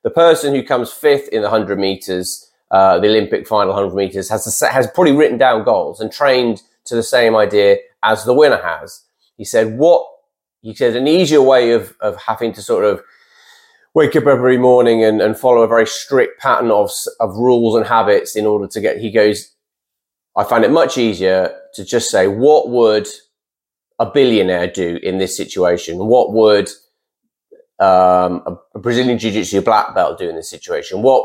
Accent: British